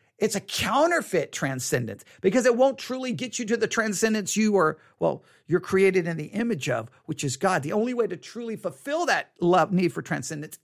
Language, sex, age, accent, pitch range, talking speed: English, male, 50-69, American, 180-255 Hz, 205 wpm